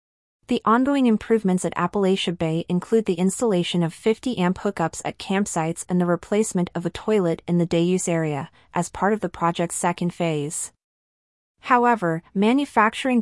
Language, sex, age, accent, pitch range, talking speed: English, female, 30-49, American, 170-200 Hz, 150 wpm